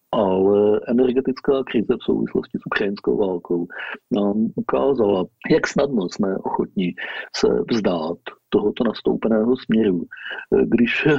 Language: Slovak